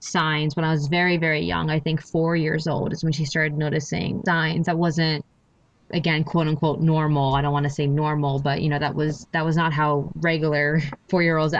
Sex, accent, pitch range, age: female, American, 150-170 Hz, 20-39